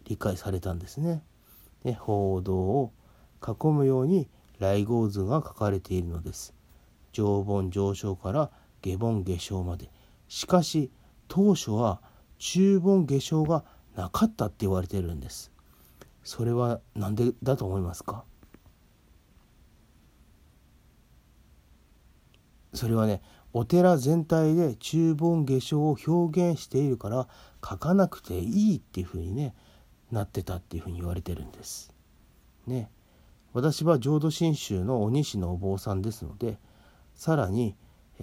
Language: Japanese